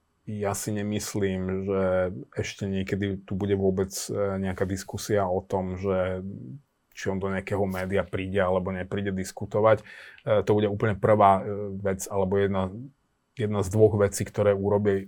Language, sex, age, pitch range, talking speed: Slovak, male, 30-49, 95-110 Hz, 145 wpm